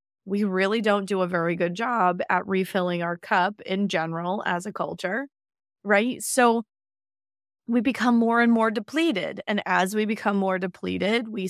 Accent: American